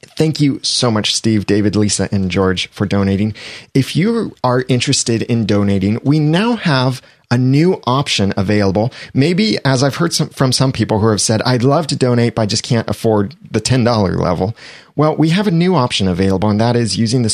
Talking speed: 200 wpm